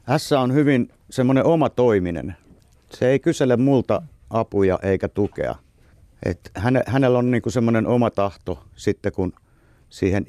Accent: native